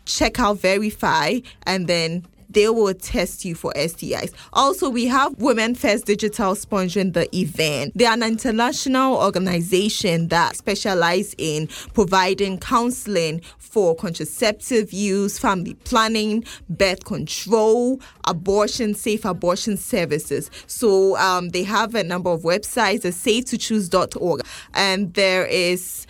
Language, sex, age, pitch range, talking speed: English, female, 20-39, 180-220 Hz, 125 wpm